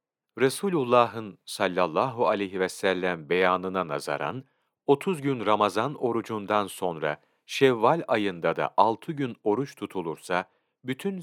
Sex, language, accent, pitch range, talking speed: male, Turkish, native, 95-135 Hz, 105 wpm